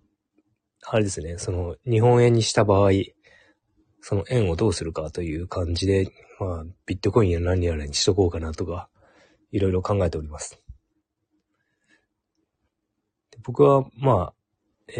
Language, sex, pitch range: Japanese, male, 90-110 Hz